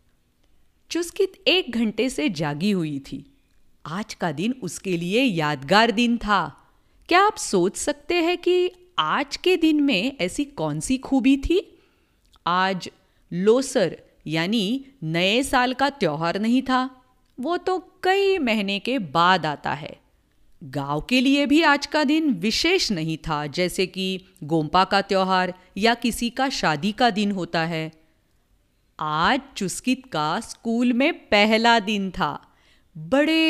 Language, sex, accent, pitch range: English, female, Indian, 180-275 Hz